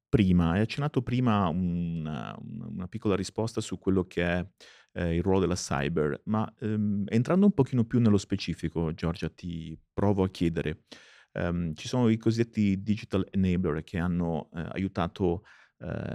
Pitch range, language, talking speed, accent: 90-110 Hz, Italian, 155 wpm, native